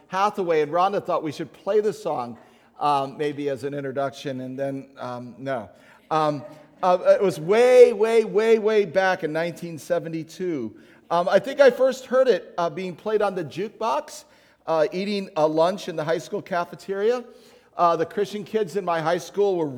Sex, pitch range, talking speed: male, 150-205 Hz, 180 wpm